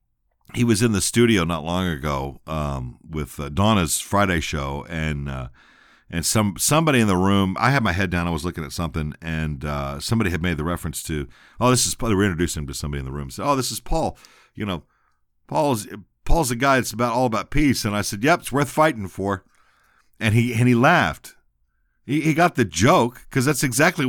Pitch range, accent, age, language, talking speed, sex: 80-130 Hz, American, 50-69, English, 220 wpm, male